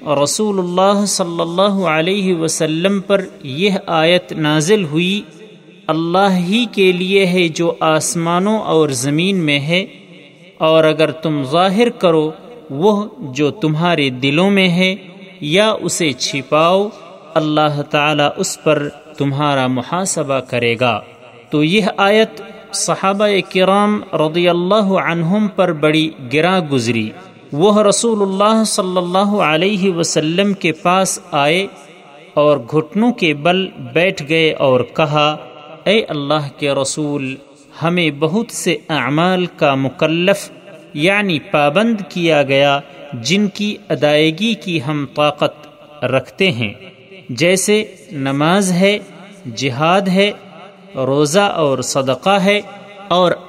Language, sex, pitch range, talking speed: Urdu, male, 150-195 Hz, 120 wpm